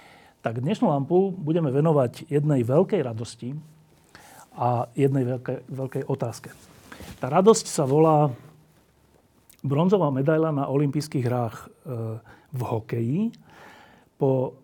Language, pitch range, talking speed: Slovak, 130-160 Hz, 105 wpm